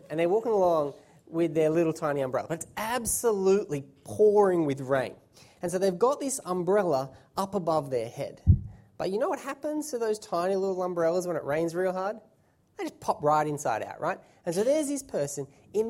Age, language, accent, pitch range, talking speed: 20-39, English, Australian, 185-290 Hz, 200 wpm